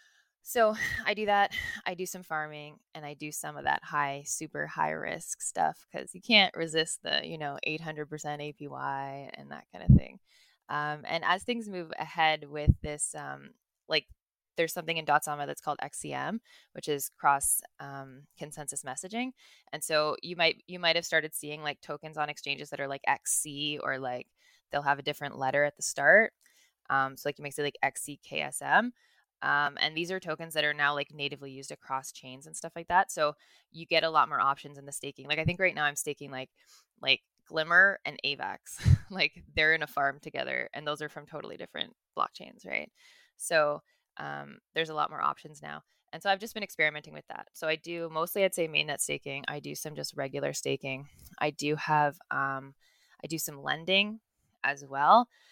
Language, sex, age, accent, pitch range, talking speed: English, female, 20-39, American, 140-165 Hz, 200 wpm